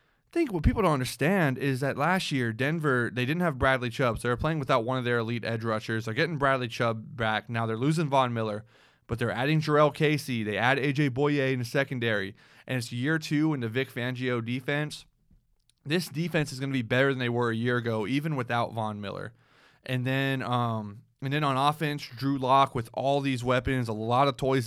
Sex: male